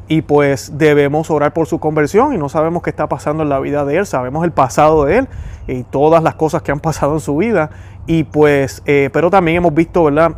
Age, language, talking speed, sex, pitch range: 30-49, Spanish, 235 wpm, male, 140-165 Hz